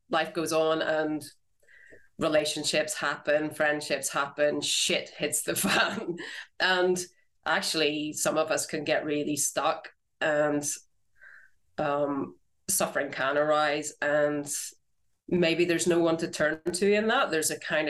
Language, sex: English, female